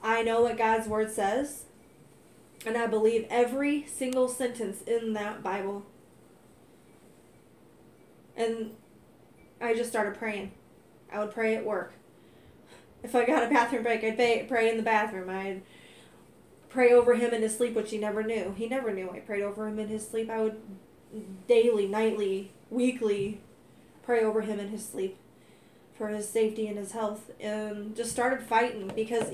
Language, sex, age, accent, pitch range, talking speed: English, female, 20-39, American, 210-230 Hz, 160 wpm